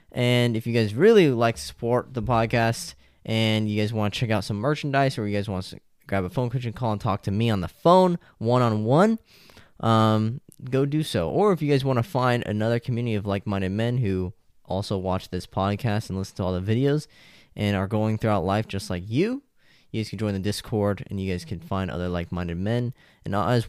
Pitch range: 95-120 Hz